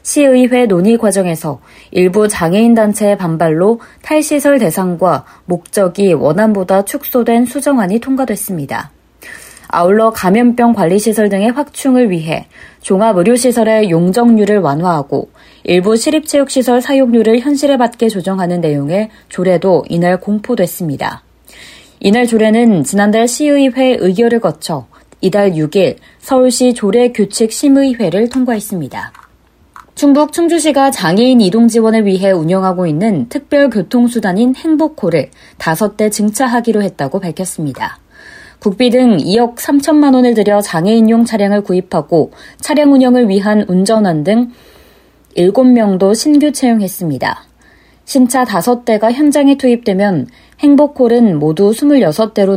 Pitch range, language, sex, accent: 185-250 Hz, Korean, female, native